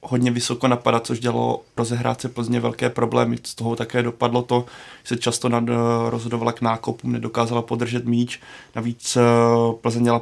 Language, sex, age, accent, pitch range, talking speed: Czech, male, 20-39, native, 115-125 Hz, 165 wpm